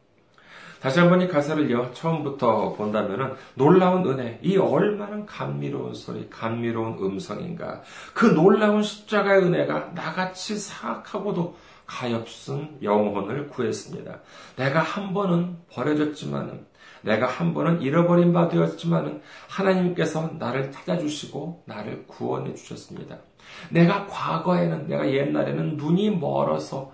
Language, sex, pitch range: Korean, male, 130-185 Hz